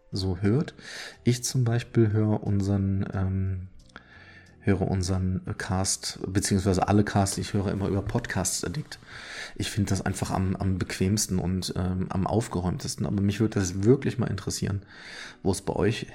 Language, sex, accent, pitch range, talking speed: German, male, German, 95-110 Hz, 160 wpm